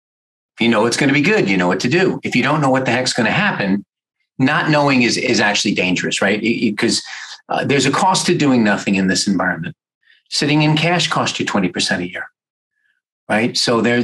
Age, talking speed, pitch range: 40-59, 220 wpm, 120-160 Hz